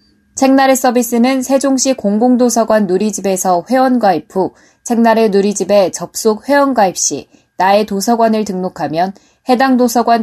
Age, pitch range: 20-39, 190-250 Hz